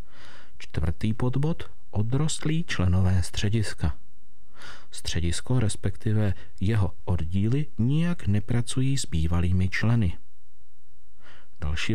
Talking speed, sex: 75 wpm, male